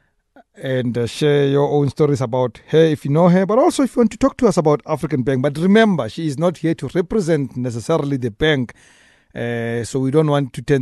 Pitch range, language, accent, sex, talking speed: 125-155 Hz, English, South African, male, 235 wpm